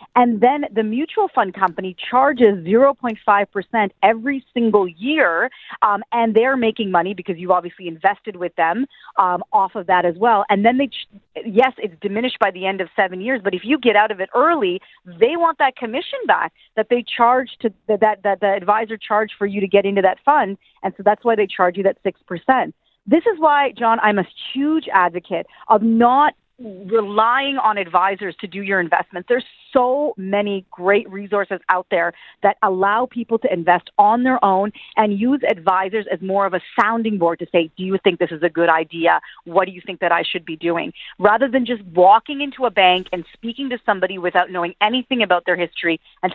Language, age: English, 40-59